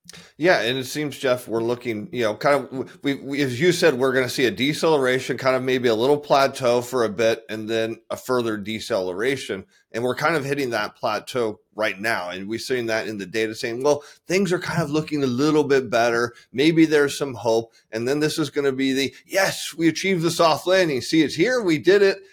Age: 30-49